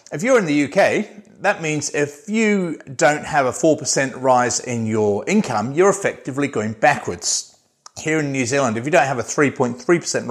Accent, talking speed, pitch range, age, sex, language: British, 180 wpm, 120-155 Hz, 40-59, male, English